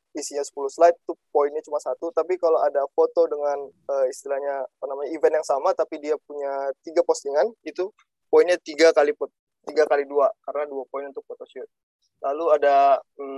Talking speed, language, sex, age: 165 wpm, Indonesian, male, 20-39